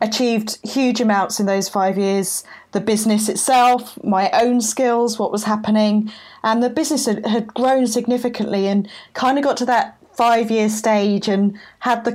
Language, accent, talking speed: English, British, 165 wpm